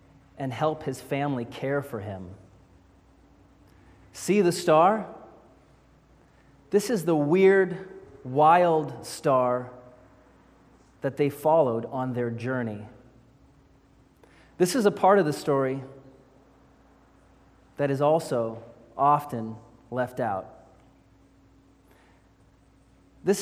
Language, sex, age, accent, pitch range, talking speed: English, male, 30-49, American, 120-160 Hz, 90 wpm